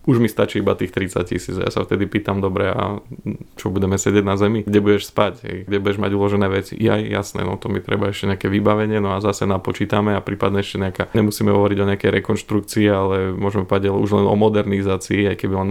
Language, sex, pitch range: Slovak, male, 100-105 Hz